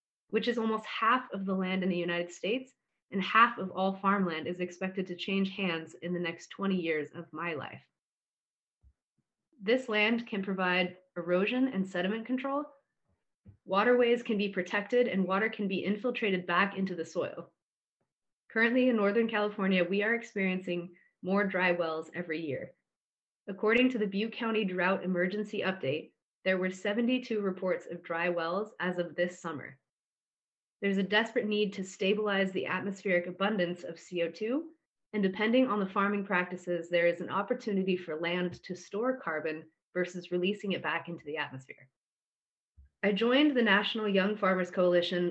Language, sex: English, female